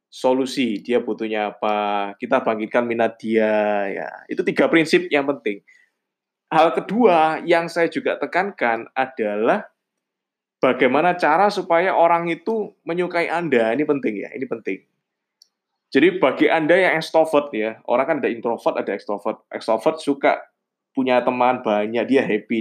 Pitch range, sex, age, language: 125-175 Hz, male, 20-39, Indonesian